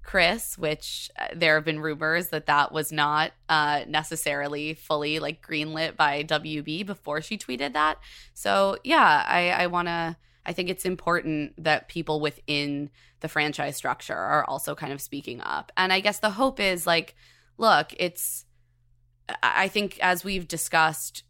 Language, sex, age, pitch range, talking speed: English, female, 20-39, 140-165 Hz, 160 wpm